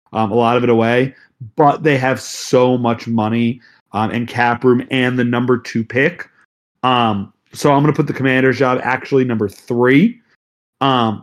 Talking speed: 180 wpm